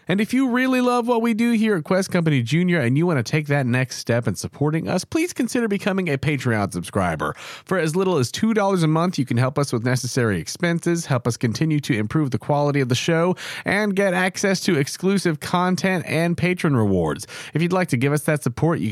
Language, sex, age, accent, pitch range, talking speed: English, male, 40-59, American, 125-170 Hz, 230 wpm